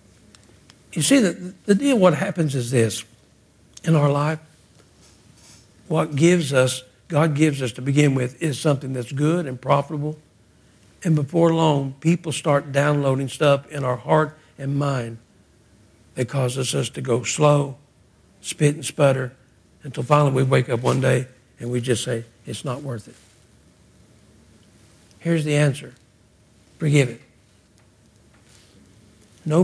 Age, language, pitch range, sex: 60-79, English, 115-165 Hz, male